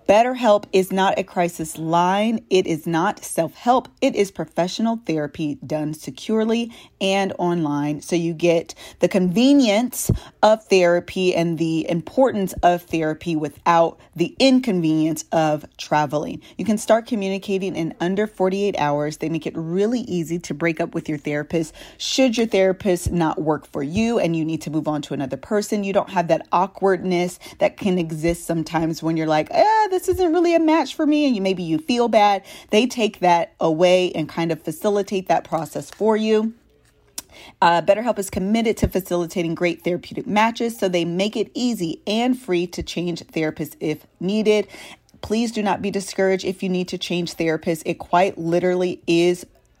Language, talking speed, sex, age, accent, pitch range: English, 175 wpm, female, 30-49, American, 165-210 Hz